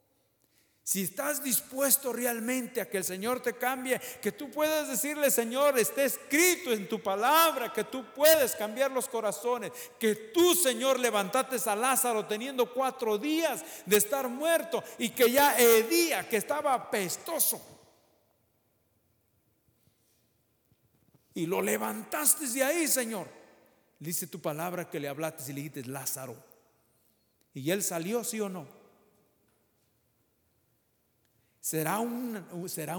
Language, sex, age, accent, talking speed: English, male, 50-69, Mexican, 125 wpm